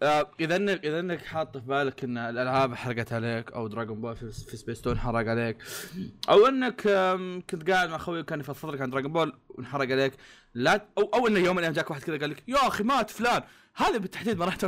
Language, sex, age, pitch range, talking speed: Arabic, male, 20-39, 125-170 Hz, 210 wpm